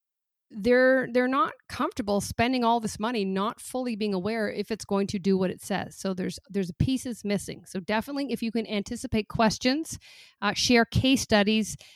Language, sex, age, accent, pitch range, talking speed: English, female, 40-59, American, 185-230 Hz, 180 wpm